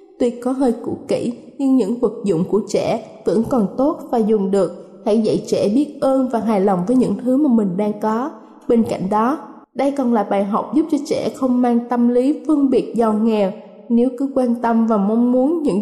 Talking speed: 225 wpm